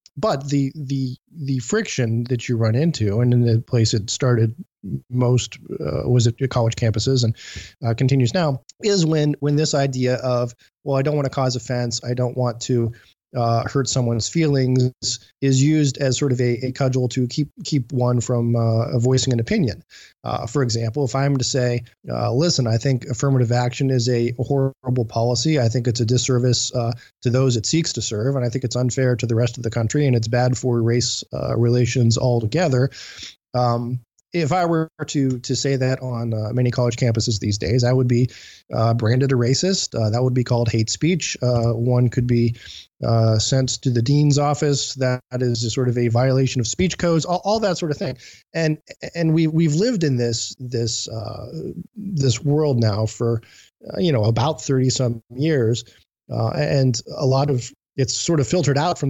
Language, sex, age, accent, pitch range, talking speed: English, male, 20-39, American, 120-140 Hz, 200 wpm